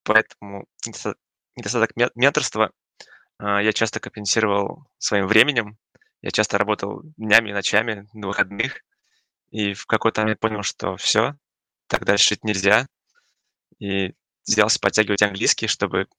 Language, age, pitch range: Russian, 20-39, 100-115 Hz